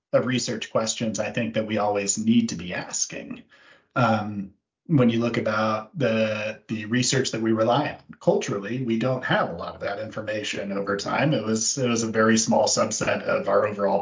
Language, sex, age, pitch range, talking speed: English, male, 40-59, 100-125 Hz, 195 wpm